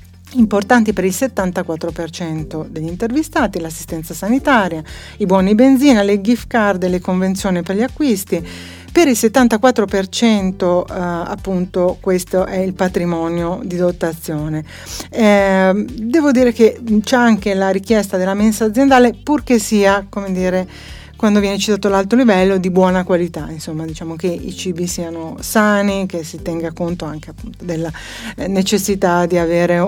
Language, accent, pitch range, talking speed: Italian, native, 170-210 Hz, 140 wpm